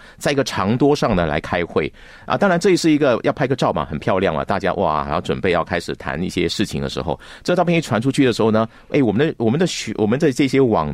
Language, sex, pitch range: Chinese, male, 90-140 Hz